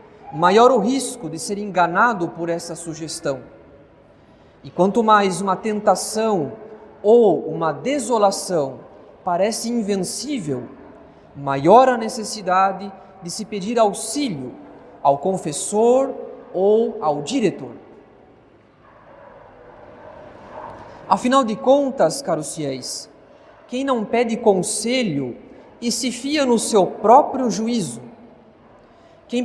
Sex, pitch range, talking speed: male, 180-245 Hz, 100 wpm